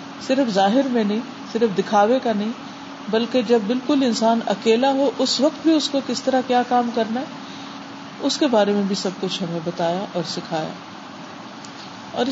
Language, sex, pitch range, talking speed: Urdu, female, 205-260 Hz, 180 wpm